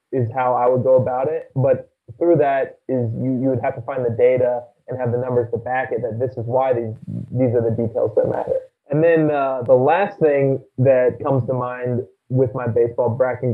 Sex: male